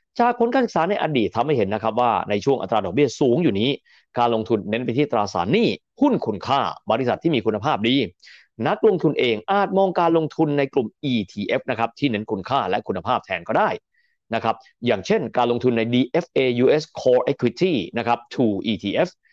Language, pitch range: Thai, 115-165 Hz